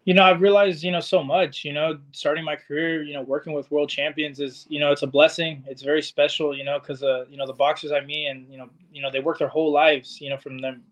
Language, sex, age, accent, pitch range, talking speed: English, male, 20-39, American, 135-155 Hz, 280 wpm